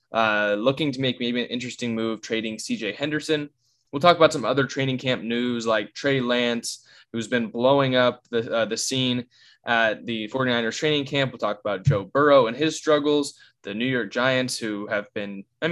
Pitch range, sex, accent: 115-140 Hz, male, American